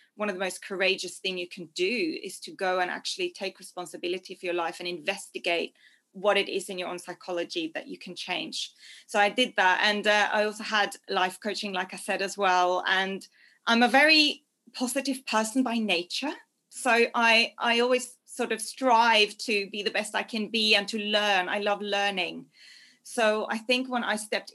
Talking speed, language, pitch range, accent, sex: 200 wpm, English, 185-225 Hz, British, female